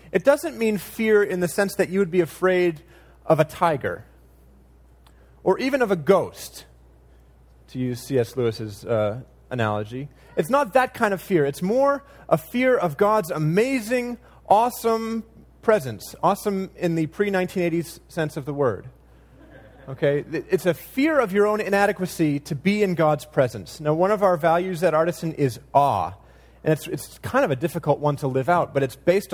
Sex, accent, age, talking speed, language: male, American, 30-49, 175 wpm, English